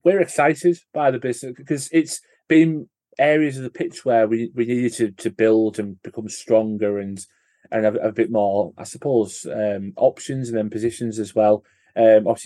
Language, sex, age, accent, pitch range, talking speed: English, male, 30-49, British, 105-120 Hz, 190 wpm